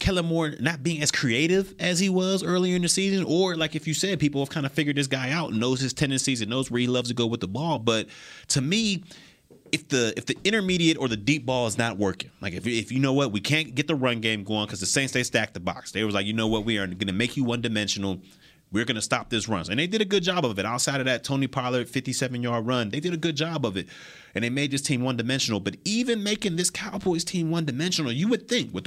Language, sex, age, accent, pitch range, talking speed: English, male, 30-49, American, 120-170 Hz, 275 wpm